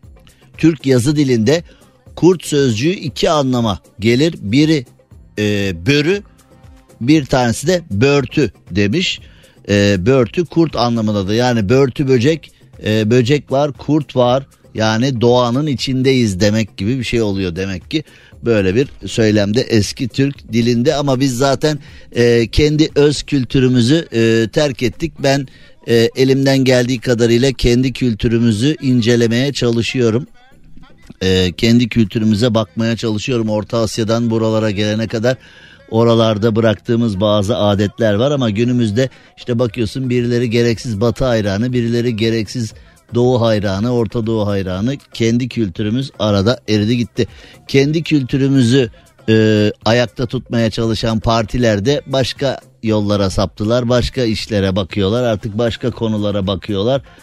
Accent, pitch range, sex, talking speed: native, 110-130 Hz, male, 120 wpm